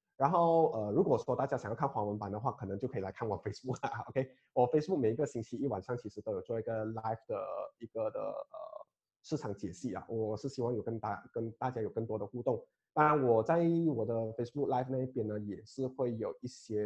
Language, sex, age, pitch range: Chinese, male, 20-39, 105-130 Hz